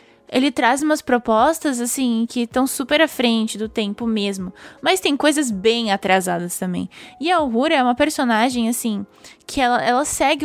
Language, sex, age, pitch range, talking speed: Portuguese, female, 10-29, 225-280 Hz, 170 wpm